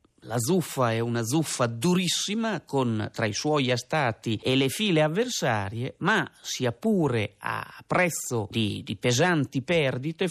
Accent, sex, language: native, male, Italian